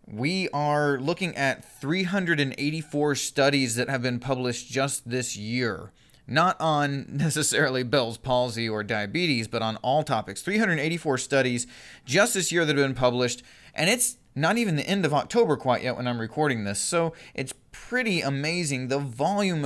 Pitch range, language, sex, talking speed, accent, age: 125-160 Hz, English, male, 160 wpm, American, 20-39